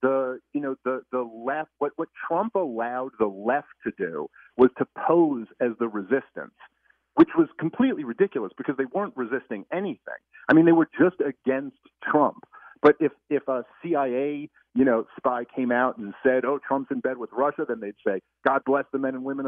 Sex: male